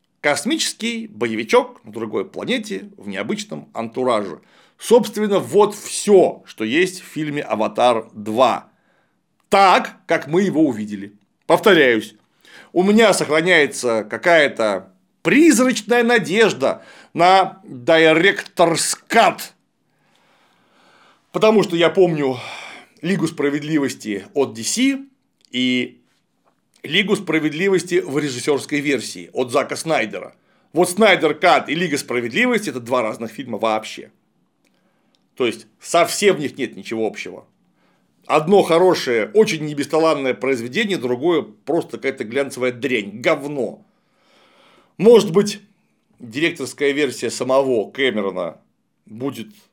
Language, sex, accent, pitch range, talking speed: Russian, male, native, 135-205 Hz, 105 wpm